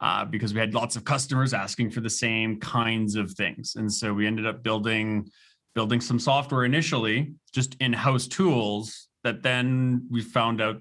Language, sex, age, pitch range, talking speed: English, male, 30-49, 110-135 Hz, 180 wpm